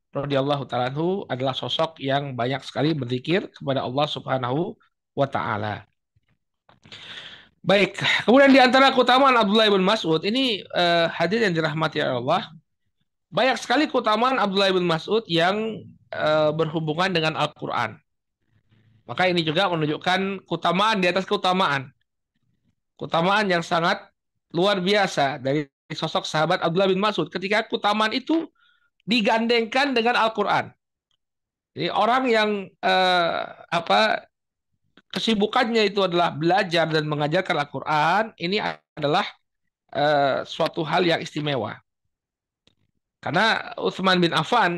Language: Indonesian